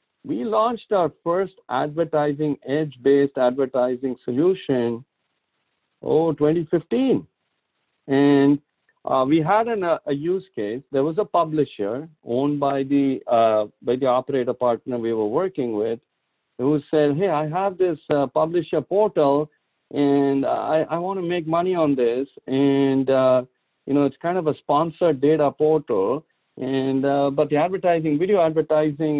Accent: Indian